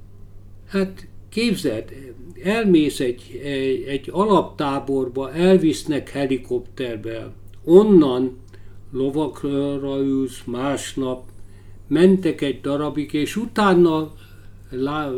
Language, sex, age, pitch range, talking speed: Hungarian, male, 50-69, 125-155 Hz, 75 wpm